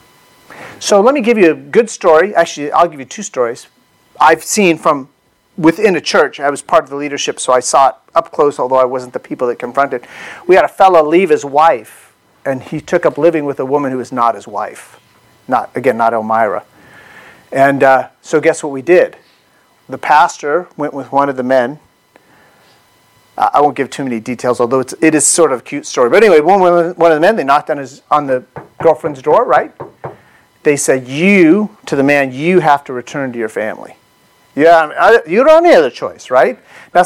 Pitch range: 135-210 Hz